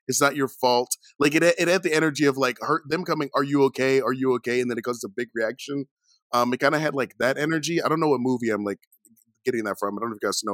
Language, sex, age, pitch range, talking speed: English, male, 20-39, 125-160 Hz, 300 wpm